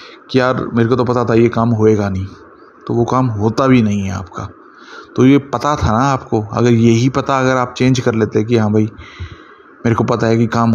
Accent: native